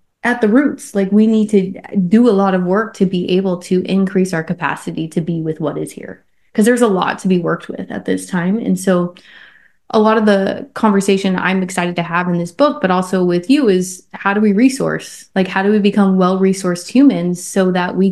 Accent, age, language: American, 20-39, English